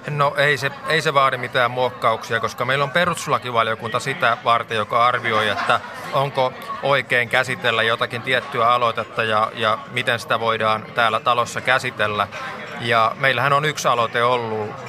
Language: Finnish